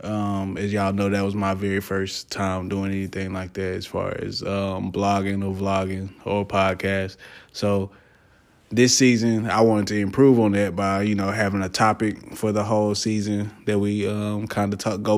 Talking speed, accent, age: 195 wpm, American, 20-39